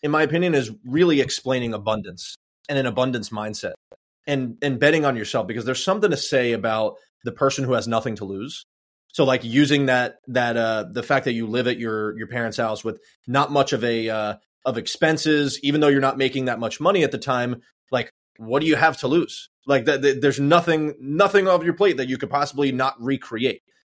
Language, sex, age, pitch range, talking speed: English, male, 30-49, 115-150 Hz, 215 wpm